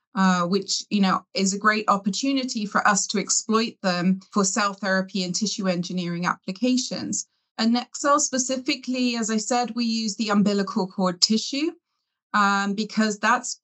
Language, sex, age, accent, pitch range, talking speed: English, female, 30-49, British, 195-240 Hz, 160 wpm